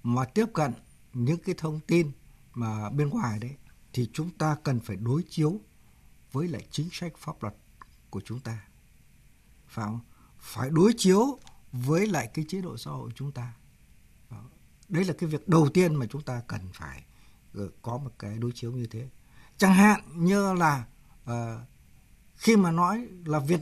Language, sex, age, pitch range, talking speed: Vietnamese, male, 60-79, 120-170 Hz, 175 wpm